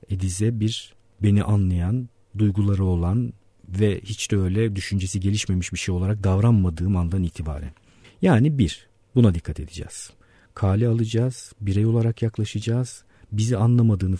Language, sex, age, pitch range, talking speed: Turkish, male, 50-69, 90-120 Hz, 125 wpm